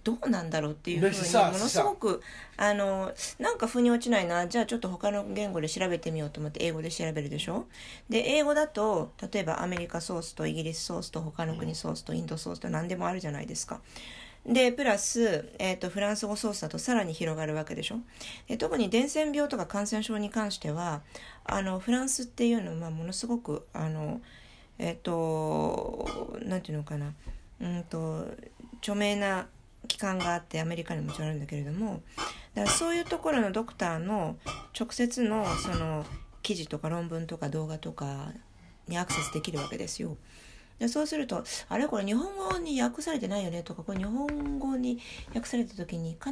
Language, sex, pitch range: Japanese, female, 160-225 Hz